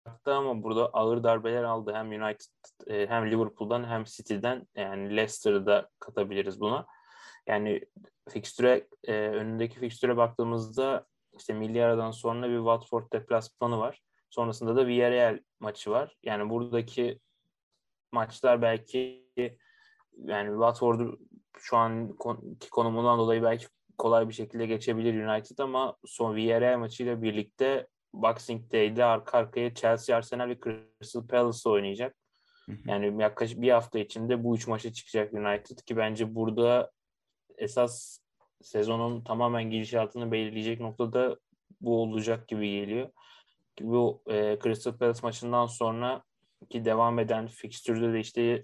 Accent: native